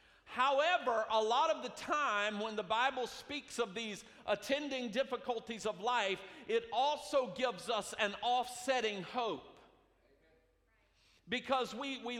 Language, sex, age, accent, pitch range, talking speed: English, male, 50-69, American, 220-280 Hz, 130 wpm